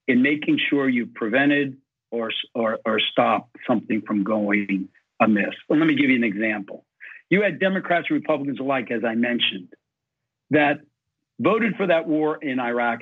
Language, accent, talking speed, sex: English, American, 160 wpm, male